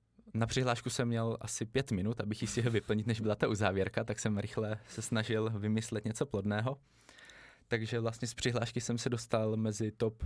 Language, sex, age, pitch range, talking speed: Czech, male, 20-39, 105-120 Hz, 195 wpm